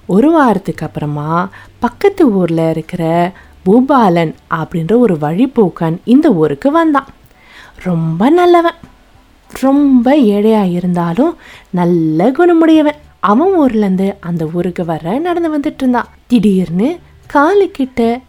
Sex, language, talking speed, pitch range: female, Tamil, 95 wpm, 175-285 Hz